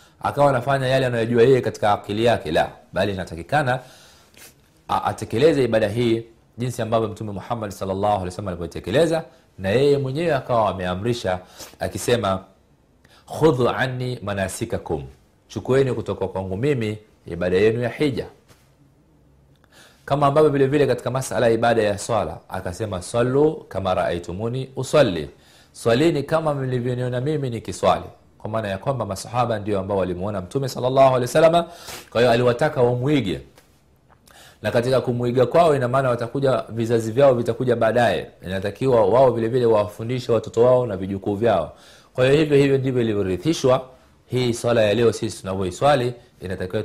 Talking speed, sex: 140 wpm, male